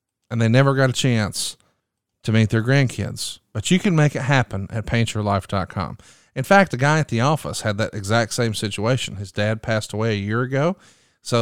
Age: 40-59